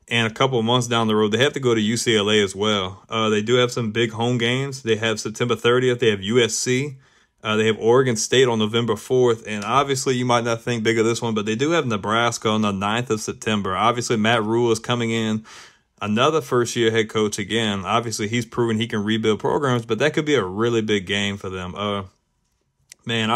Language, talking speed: English, 230 wpm